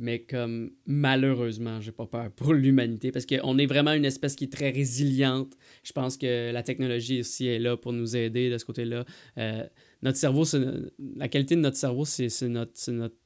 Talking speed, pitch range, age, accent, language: 215 wpm, 125-145 Hz, 20-39, Canadian, French